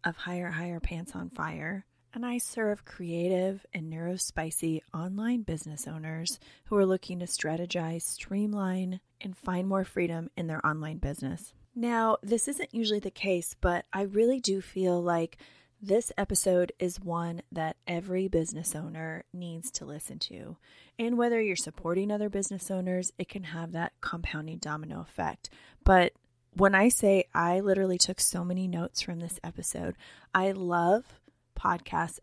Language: English